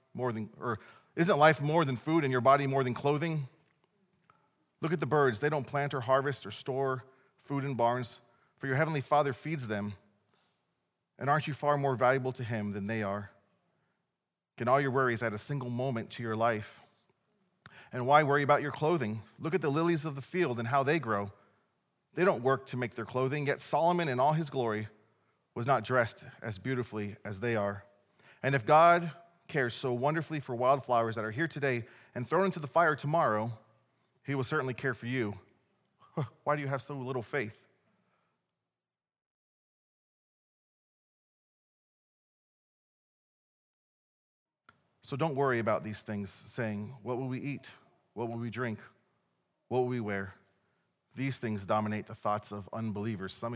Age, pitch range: 40-59, 110-145 Hz